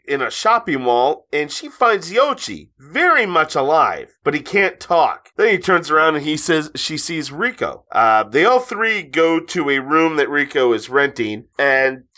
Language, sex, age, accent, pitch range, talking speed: English, male, 30-49, American, 120-170 Hz, 185 wpm